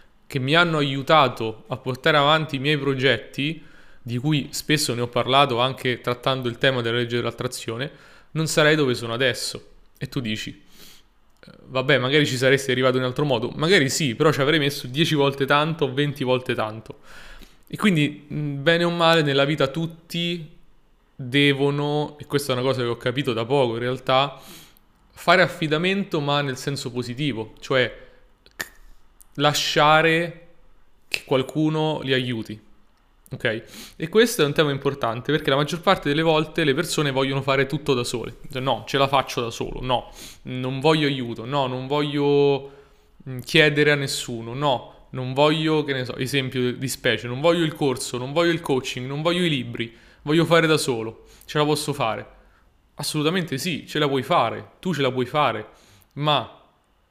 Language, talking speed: Italian, 170 wpm